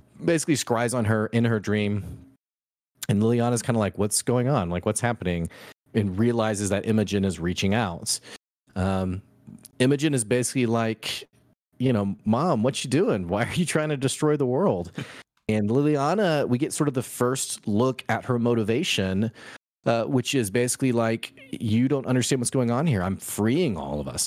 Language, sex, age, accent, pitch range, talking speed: English, male, 30-49, American, 100-130 Hz, 180 wpm